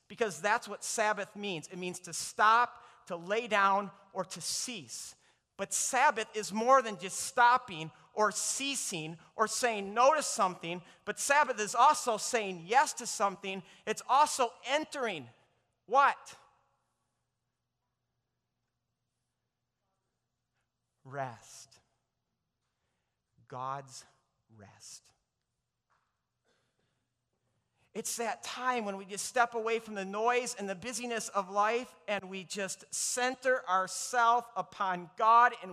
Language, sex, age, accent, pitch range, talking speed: English, male, 30-49, American, 185-240 Hz, 115 wpm